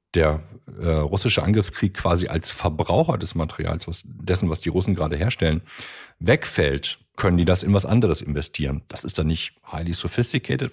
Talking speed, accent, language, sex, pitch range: 160 wpm, German, German, male, 85-105 Hz